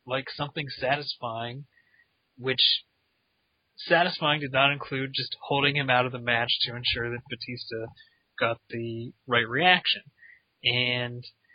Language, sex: English, male